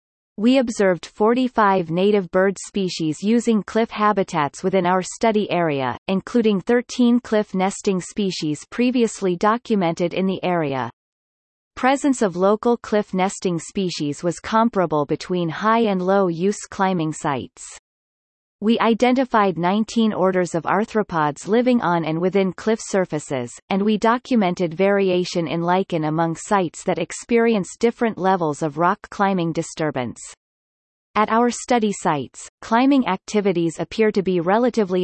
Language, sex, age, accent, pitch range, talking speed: English, female, 30-49, American, 170-220 Hz, 130 wpm